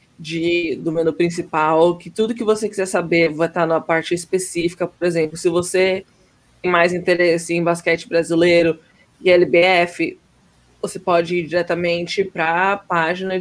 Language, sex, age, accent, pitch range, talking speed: Portuguese, female, 20-39, Brazilian, 160-180 Hz, 150 wpm